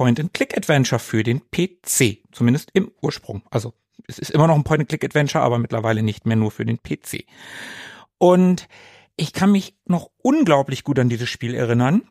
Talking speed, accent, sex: 165 wpm, German, male